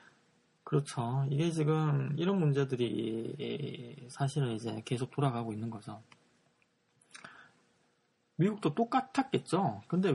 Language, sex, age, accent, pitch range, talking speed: English, male, 20-39, Korean, 115-145 Hz, 85 wpm